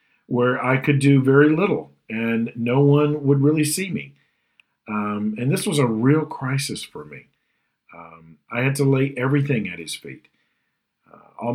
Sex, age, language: male, 50-69, English